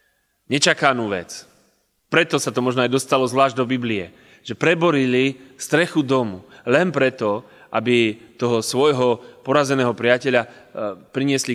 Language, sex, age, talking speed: Slovak, male, 30-49, 120 wpm